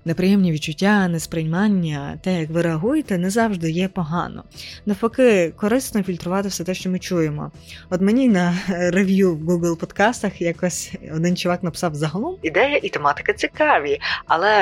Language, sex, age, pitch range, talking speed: Ukrainian, female, 20-39, 155-195 Hz, 145 wpm